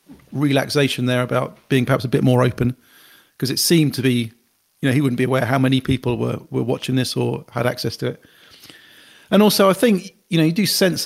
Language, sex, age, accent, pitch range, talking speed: English, male, 40-59, British, 125-145 Hz, 220 wpm